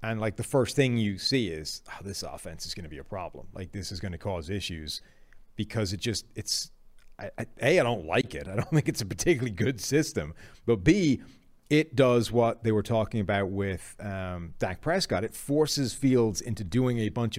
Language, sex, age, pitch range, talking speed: English, male, 30-49, 100-130 Hz, 210 wpm